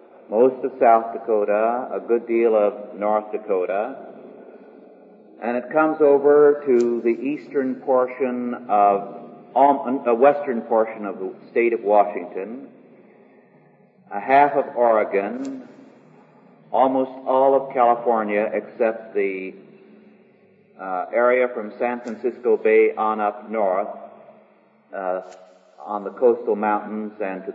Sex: male